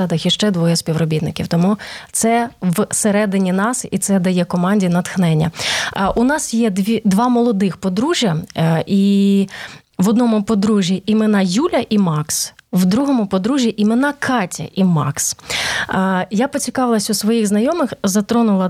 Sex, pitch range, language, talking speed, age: female, 190-235 Hz, Ukrainian, 135 wpm, 30-49